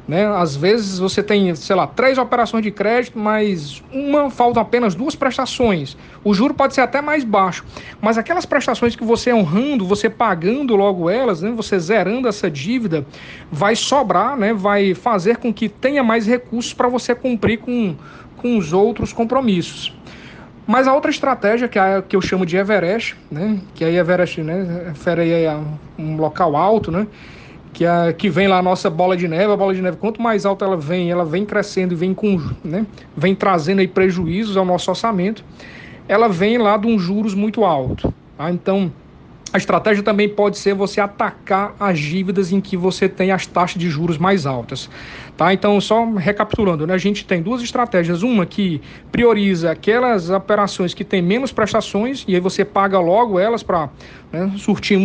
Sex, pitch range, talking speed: male, 185-225 Hz, 180 wpm